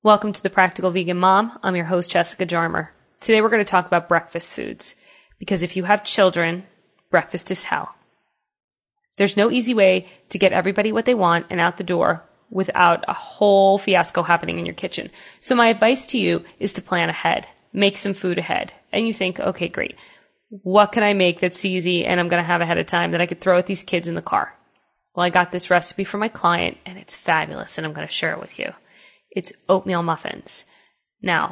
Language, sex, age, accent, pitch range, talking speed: English, female, 20-39, American, 180-205 Hz, 215 wpm